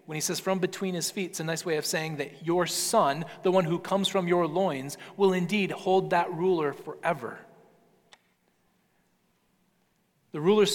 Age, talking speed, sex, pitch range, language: 30-49, 175 wpm, male, 150-195 Hz, English